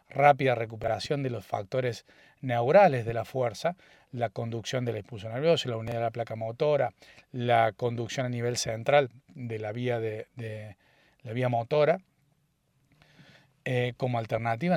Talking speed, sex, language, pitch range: 140 wpm, male, Spanish, 115-145 Hz